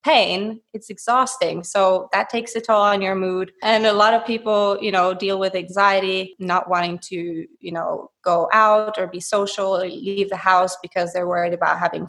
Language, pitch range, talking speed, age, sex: English, 180-215 Hz, 200 wpm, 20-39, female